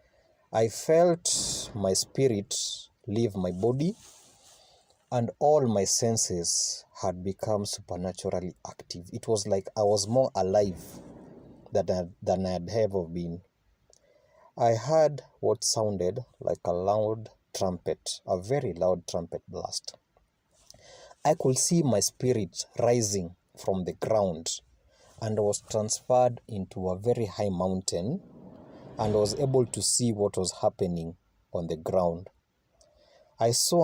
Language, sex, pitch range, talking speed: English, male, 95-120 Hz, 125 wpm